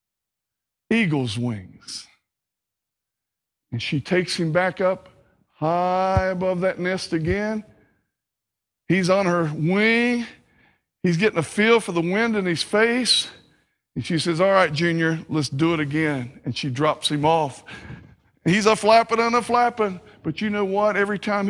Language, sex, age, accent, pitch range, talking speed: English, male, 60-79, American, 125-185 Hz, 145 wpm